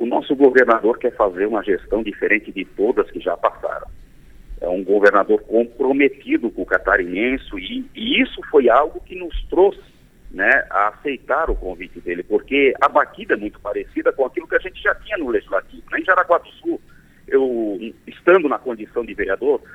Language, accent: Portuguese, Brazilian